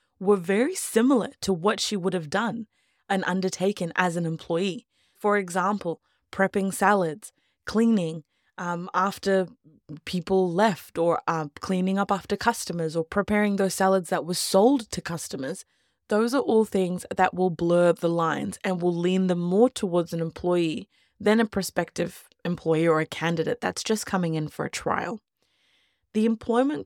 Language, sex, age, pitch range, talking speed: English, female, 20-39, 175-220 Hz, 160 wpm